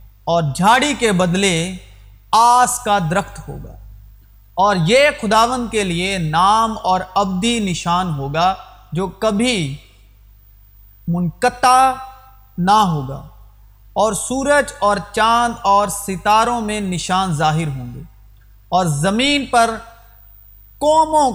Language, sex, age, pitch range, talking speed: Urdu, male, 40-59, 150-225 Hz, 105 wpm